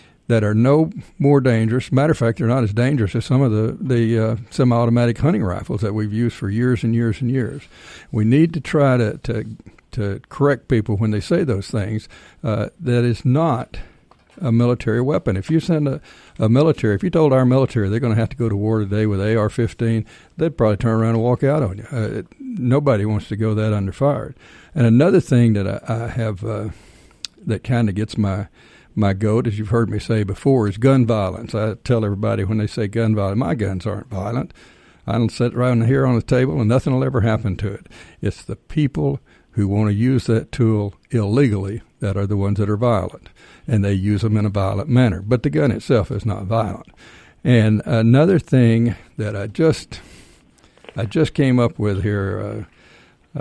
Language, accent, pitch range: English, American, 105-125 Hz